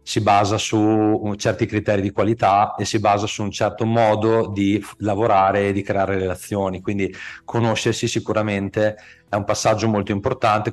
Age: 30-49